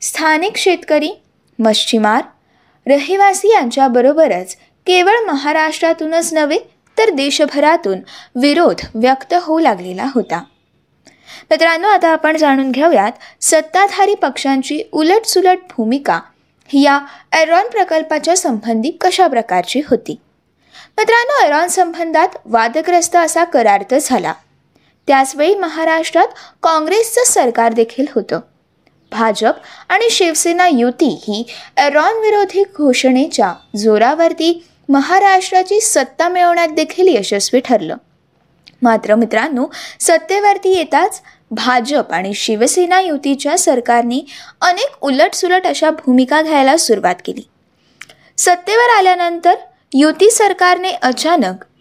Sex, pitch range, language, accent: female, 255-360 Hz, Marathi, native